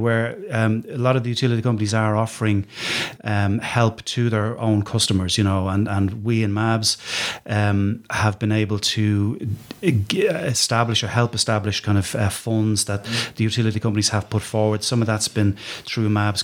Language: English